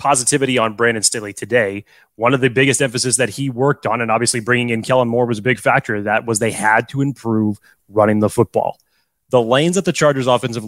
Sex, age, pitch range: male, 20-39, 110-150 Hz